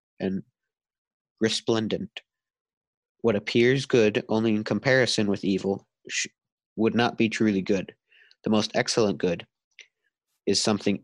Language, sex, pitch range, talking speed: English, male, 105-130 Hz, 115 wpm